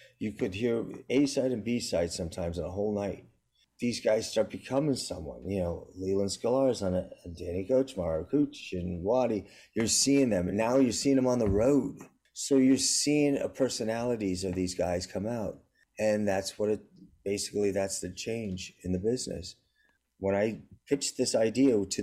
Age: 30-49